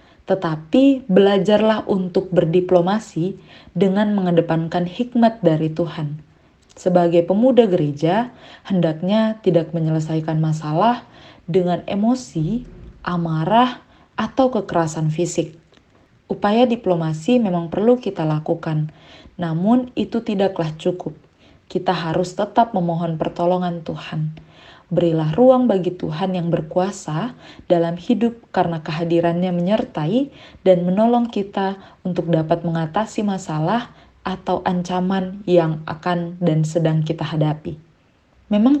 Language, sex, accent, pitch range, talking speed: Indonesian, female, native, 165-200 Hz, 100 wpm